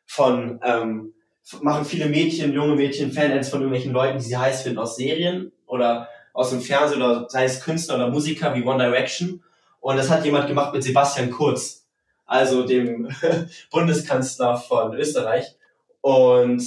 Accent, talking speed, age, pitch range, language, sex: German, 160 wpm, 20-39, 125-140 Hz, German, male